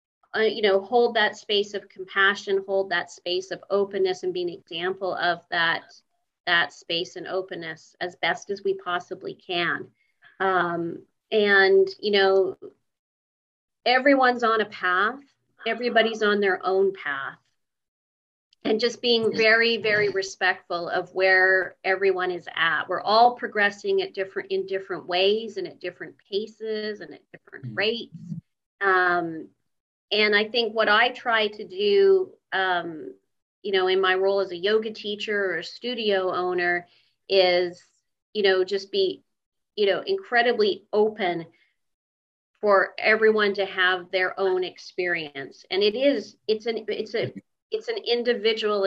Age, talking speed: 30-49, 145 wpm